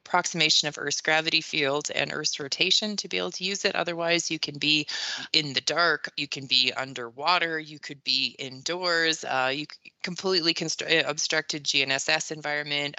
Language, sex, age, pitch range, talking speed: English, female, 20-39, 145-180 Hz, 165 wpm